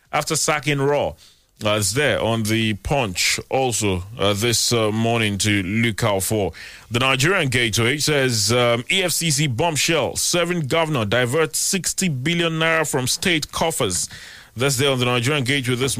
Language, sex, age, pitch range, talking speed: English, male, 30-49, 110-145 Hz, 155 wpm